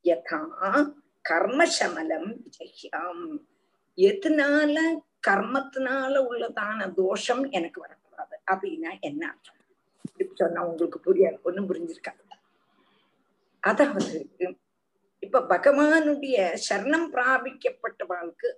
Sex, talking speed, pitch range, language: female, 60 wpm, 195-300 Hz, Tamil